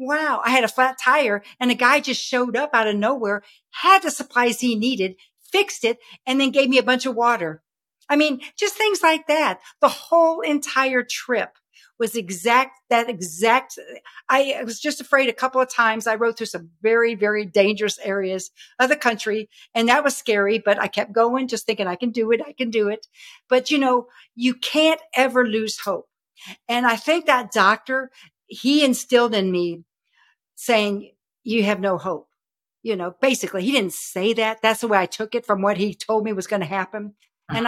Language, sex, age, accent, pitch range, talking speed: English, female, 60-79, American, 210-280 Hz, 200 wpm